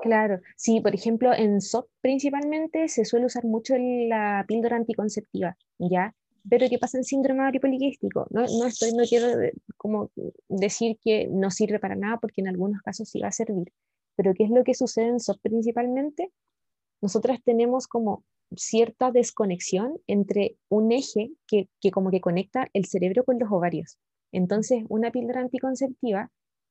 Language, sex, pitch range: Spanish, female, 200-250 Hz